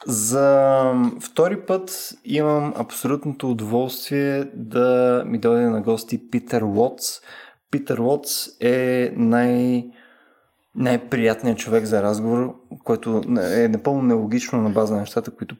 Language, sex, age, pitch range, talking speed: Bulgarian, male, 20-39, 120-155 Hz, 115 wpm